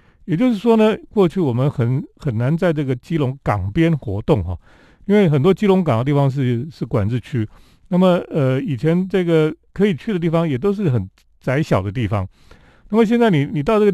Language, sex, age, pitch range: Chinese, male, 40-59, 115-170 Hz